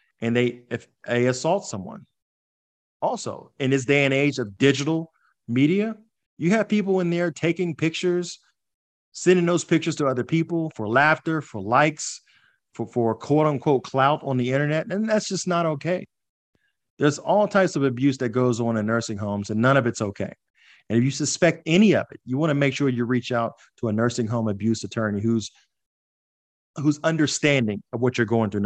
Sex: male